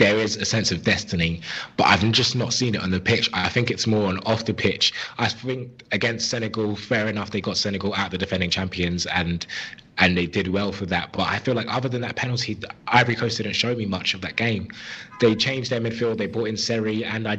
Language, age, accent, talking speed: English, 20-39, British, 245 wpm